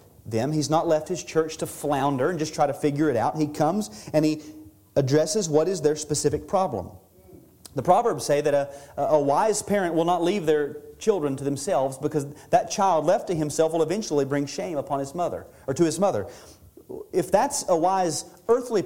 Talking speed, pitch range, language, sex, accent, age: 195 wpm, 135-195 Hz, English, male, American, 40-59